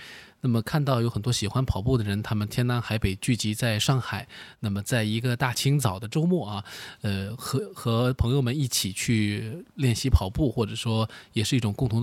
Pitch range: 105-145 Hz